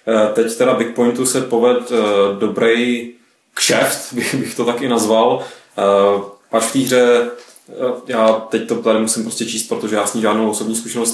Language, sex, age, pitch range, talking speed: Czech, male, 20-39, 110-130 Hz, 160 wpm